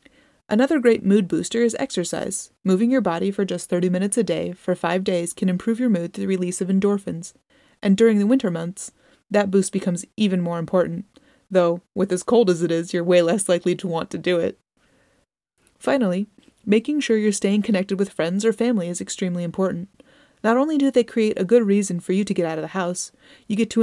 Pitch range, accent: 180-235 Hz, American